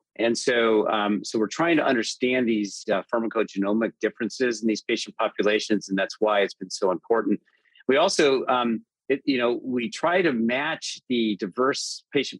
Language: English